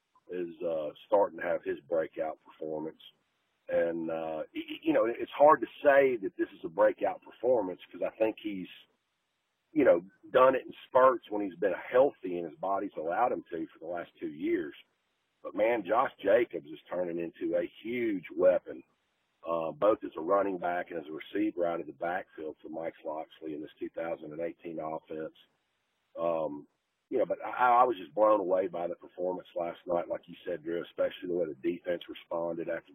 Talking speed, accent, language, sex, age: 190 wpm, American, English, male, 40-59